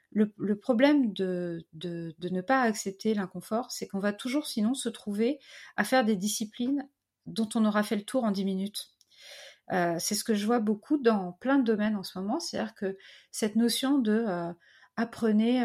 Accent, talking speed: French, 195 wpm